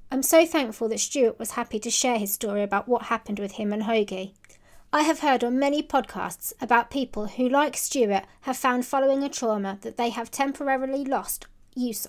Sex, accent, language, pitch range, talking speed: female, British, English, 210-275 Hz, 200 wpm